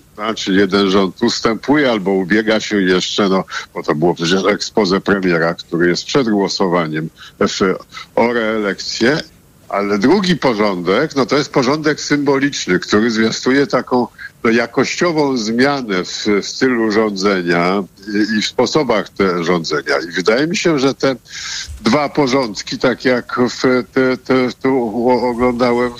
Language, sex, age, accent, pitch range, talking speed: Polish, male, 50-69, native, 105-140 Hz, 140 wpm